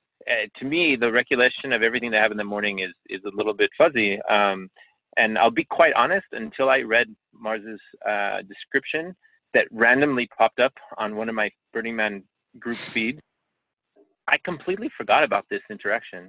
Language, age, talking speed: English, 30-49, 175 wpm